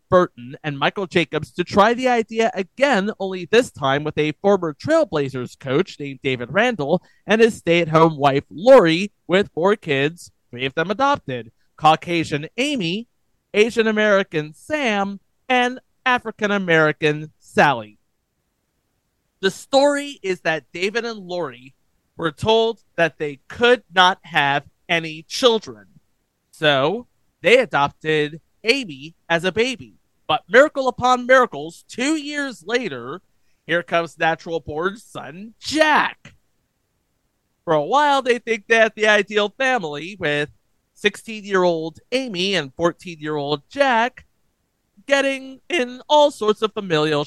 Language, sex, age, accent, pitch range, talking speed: English, male, 30-49, American, 155-230 Hz, 125 wpm